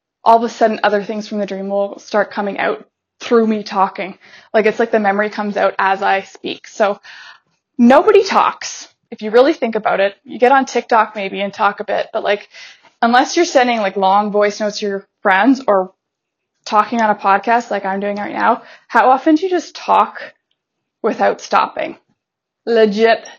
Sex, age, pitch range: female, 20-39, 200-240 Hz